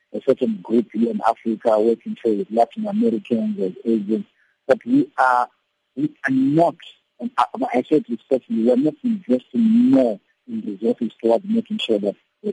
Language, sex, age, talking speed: English, male, 50-69, 170 wpm